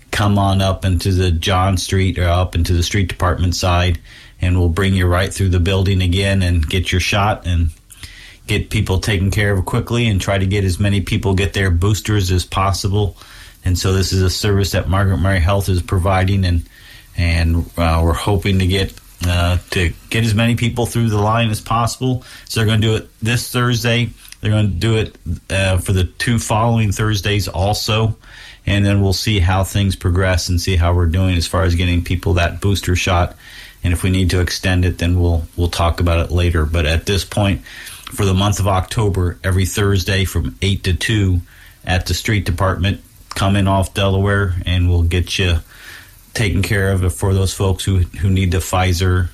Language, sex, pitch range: English, male, 90-100 Hz